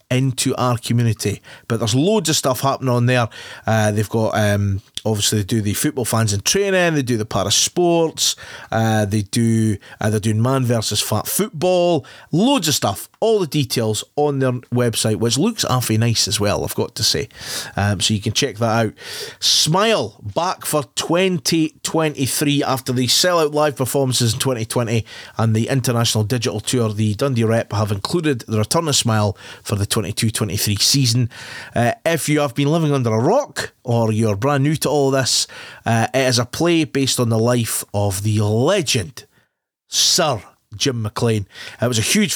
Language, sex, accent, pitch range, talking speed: English, male, British, 110-140 Hz, 185 wpm